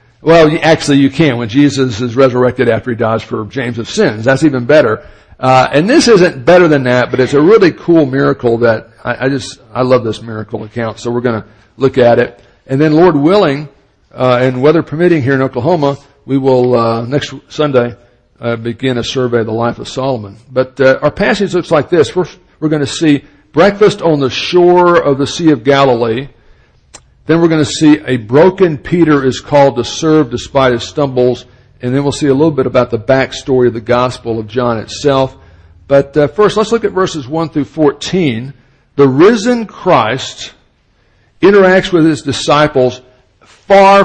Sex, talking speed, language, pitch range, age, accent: male, 195 wpm, English, 120-155 Hz, 60-79, American